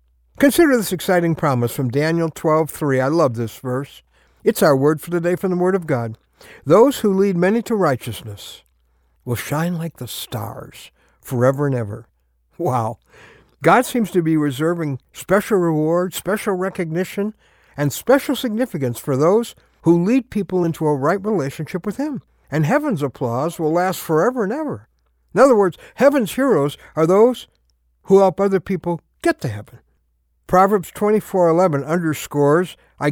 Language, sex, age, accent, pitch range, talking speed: English, male, 60-79, American, 130-195 Hz, 155 wpm